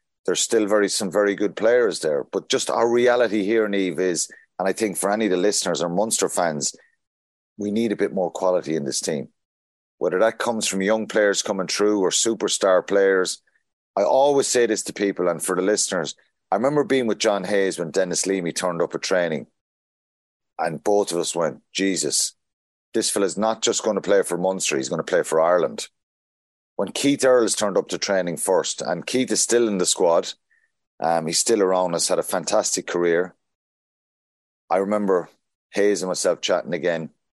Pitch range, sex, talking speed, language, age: 90-110 Hz, male, 195 wpm, English, 30-49